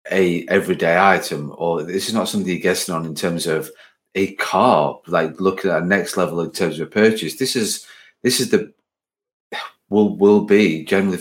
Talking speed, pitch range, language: 185 wpm, 90-125 Hz, English